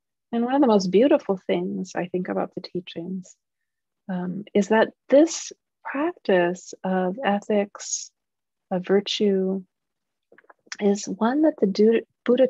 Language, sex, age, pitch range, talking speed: English, female, 40-59, 185-230 Hz, 125 wpm